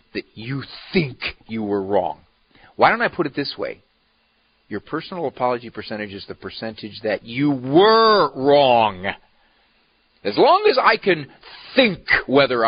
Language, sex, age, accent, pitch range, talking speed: English, male, 50-69, American, 95-145 Hz, 145 wpm